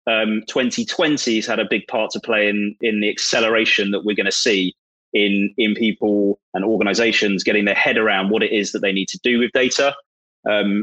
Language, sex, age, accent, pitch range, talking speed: English, male, 20-39, British, 100-115 Hz, 210 wpm